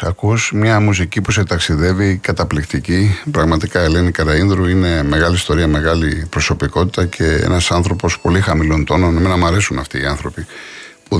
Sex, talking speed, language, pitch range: male, 150 wpm, Greek, 80-105 Hz